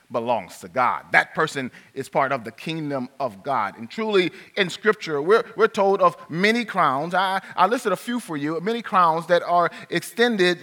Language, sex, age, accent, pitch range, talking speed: English, male, 30-49, American, 170-220 Hz, 190 wpm